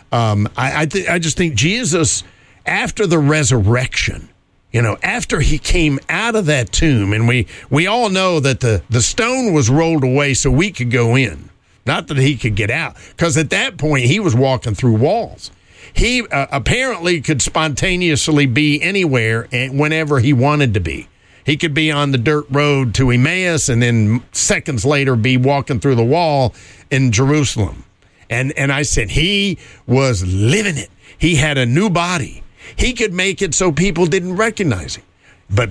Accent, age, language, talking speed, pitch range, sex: American, 50-69, English, 180 wpm, 110-155 Hz, male